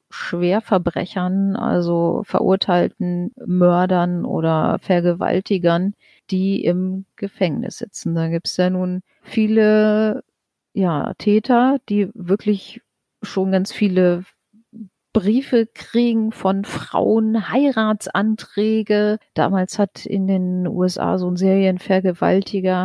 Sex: female